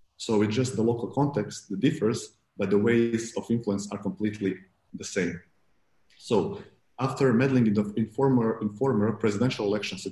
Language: English